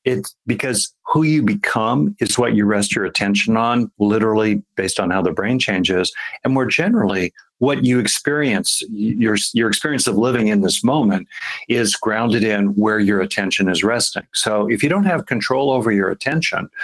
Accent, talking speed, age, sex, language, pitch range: American, 180 wpm, 50-69, male, English, 100-125 Hz